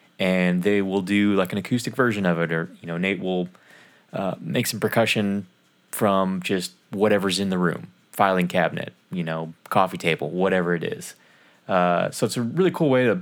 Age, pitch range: 20-39, 90-115 Hz